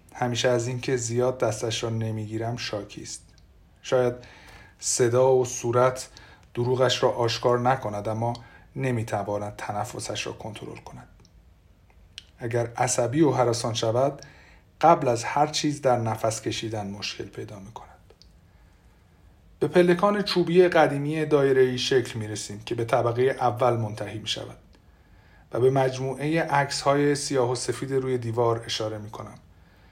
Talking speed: 140 wpm